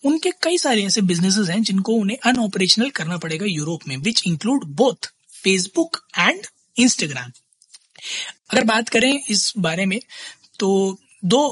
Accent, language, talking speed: native, Hindi, 140 wpm